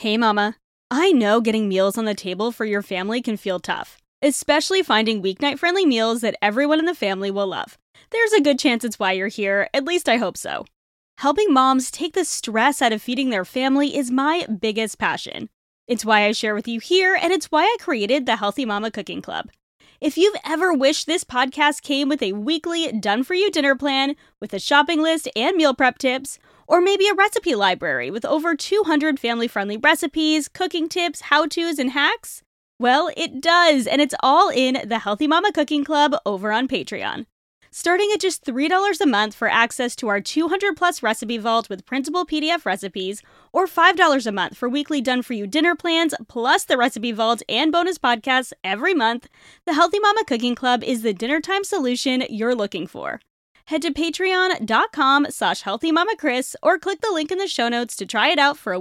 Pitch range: 230-330 Hz